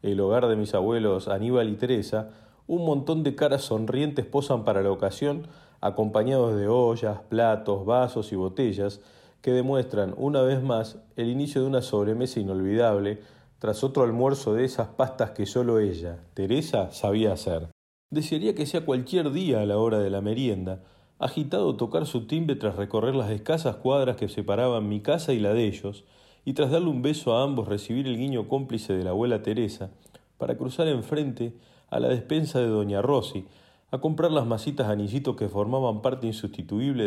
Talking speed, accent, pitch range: 175 wpm, Argentinian, 105-135 Hz